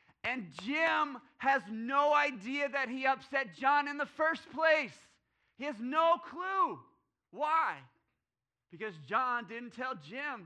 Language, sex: English, male